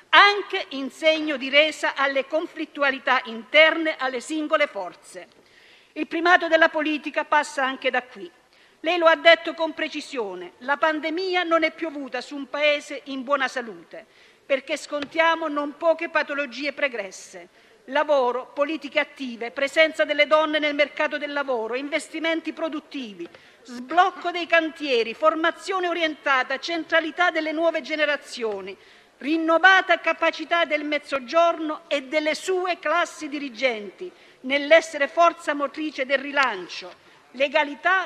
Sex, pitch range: female, 270-320 Hz